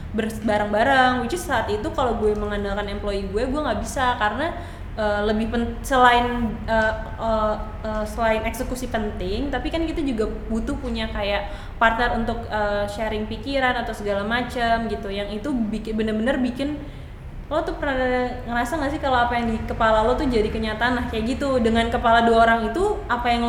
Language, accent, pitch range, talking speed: Indonesian, native, 210-250 Hz, 180 wpm